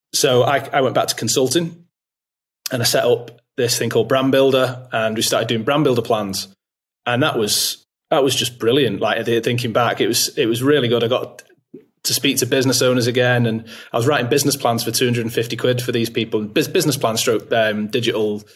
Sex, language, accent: male, English, British